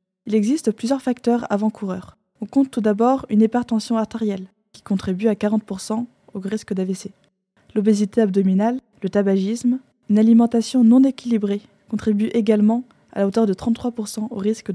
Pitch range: 200-230 Hz